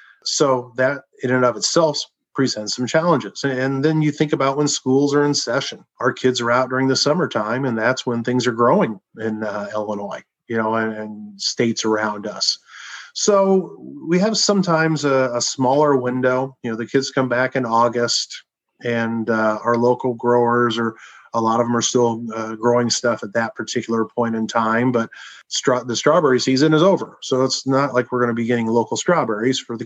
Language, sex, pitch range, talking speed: English, male, 110-130 Hz, 195 wpm